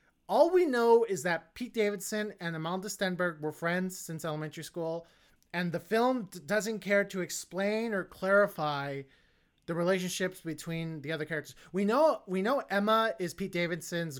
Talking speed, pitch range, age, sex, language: 160 wpm, 170-215 Hz, 30-49, male, English